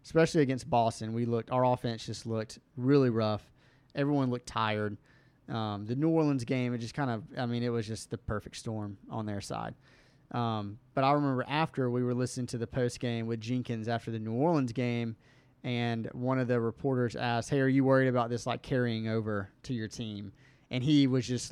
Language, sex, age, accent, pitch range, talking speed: English, male, 30-49, American, 115-135 Hz, 210 wpm